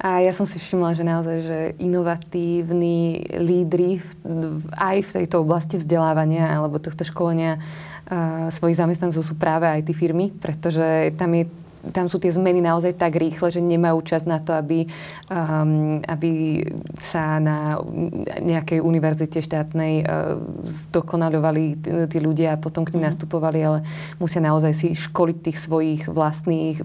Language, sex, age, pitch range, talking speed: Slovak, female, 20-39, 160-175 Hz, 150 wpm